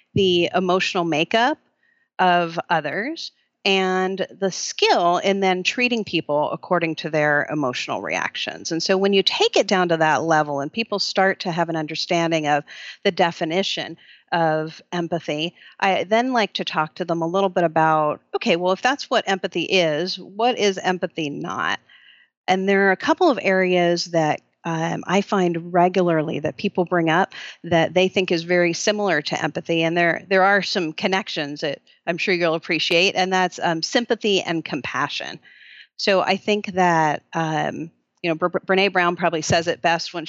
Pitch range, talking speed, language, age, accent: 165-195 Hz, 175 wpm, English, 40-59, American